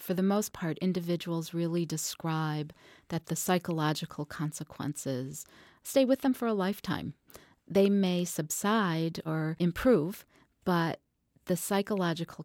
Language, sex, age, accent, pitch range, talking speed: English, female, 40-59, American, 150-180 Hz, 120 wpm